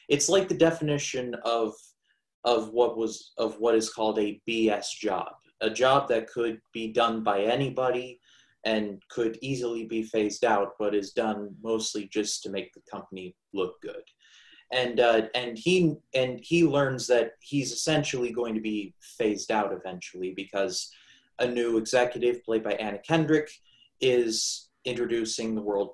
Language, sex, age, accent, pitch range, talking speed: English, male, 30-49, American, 110-125 Hz, 155 wpm